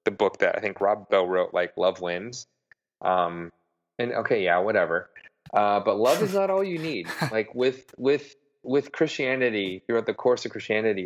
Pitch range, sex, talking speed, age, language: 95-135 Hz, male, 185 wpm, 30-49, English